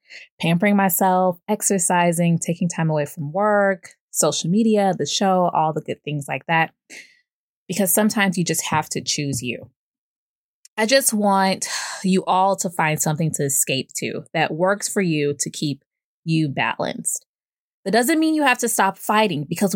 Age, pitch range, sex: 20-39, 170-225 Hz, female